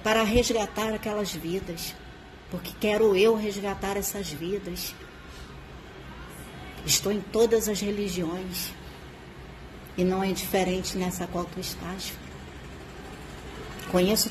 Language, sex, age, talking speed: Portuguese, female, 40-59, 100 wpm